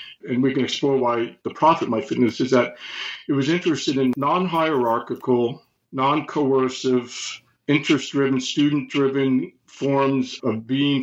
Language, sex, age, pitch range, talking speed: English, male, 50-69, 125-140 Hz, 120 wpm